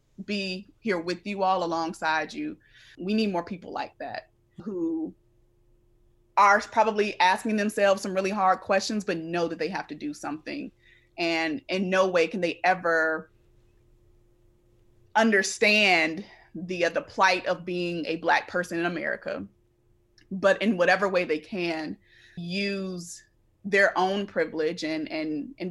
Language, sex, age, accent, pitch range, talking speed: English, female, 20-39, American, 160-200 Hz, 145 wpm